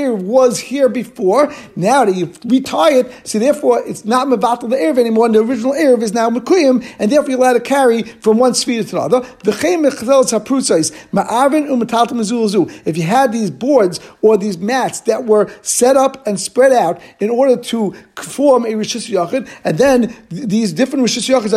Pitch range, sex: 215-260 Hz, male